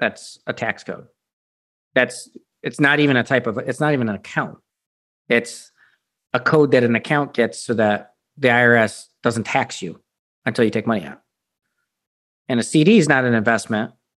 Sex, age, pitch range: male, 40-59, 115-135 Hz